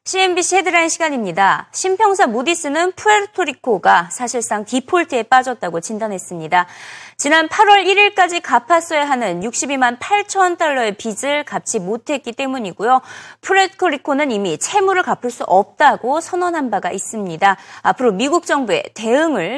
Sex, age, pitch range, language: female, 30-49, 220-335 Hz, Korean